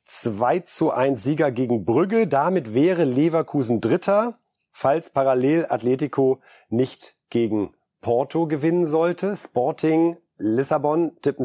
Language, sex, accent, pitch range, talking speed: German, male, German, 115-150 Hz, 110 wpm